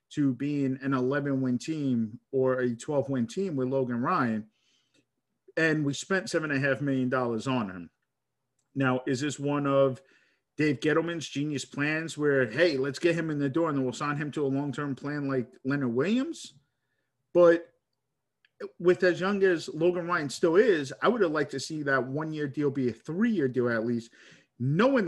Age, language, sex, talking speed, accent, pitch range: 50-69, English, male, 190 wpm, American, 135-170 Hz